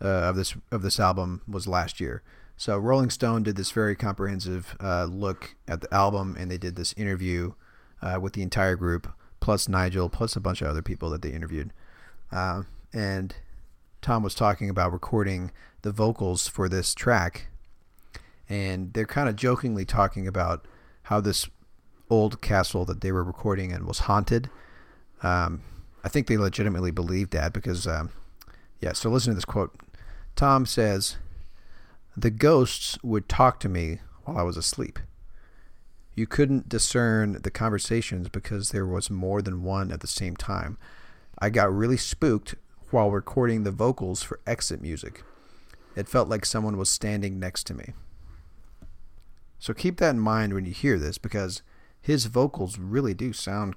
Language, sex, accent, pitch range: English, male, American, 90-110 Hz